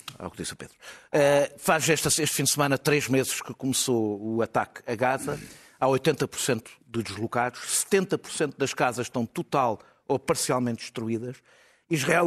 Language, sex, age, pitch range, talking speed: Portuguese, male, 50-69, 120-145 Hz, 155 wpm